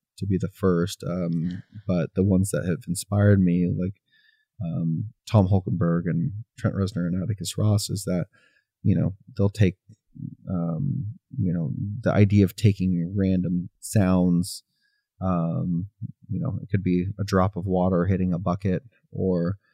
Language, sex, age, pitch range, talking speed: English, male, 30-49, 90-105 Hz, 155 wpm